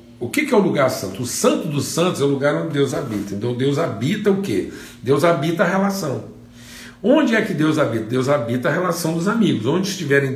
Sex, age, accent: male, 60-79, Brazilian